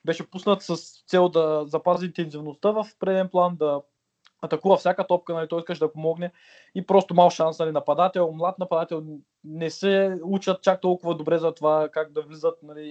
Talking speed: 180 wpm